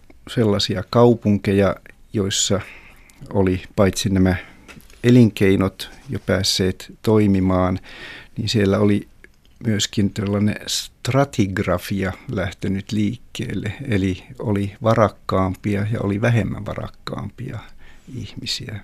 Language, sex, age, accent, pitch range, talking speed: Finnish, male, 50-69, native, 95-115 Hz, 85 wpm